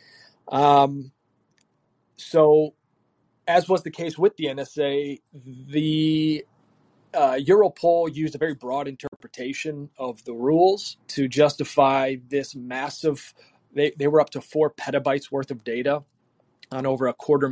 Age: 30-49